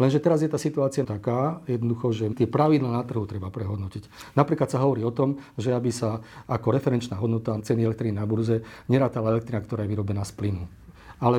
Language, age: Slovak, 40-59